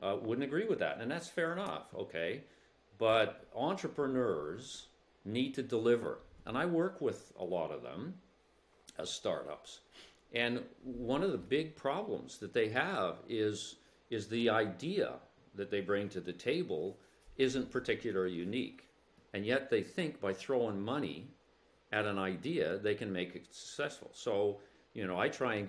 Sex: male